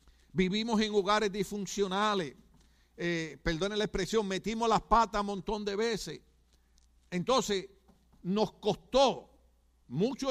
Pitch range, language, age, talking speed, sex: 160-235 Hz, Spanish, 60-79, 110 wpm, male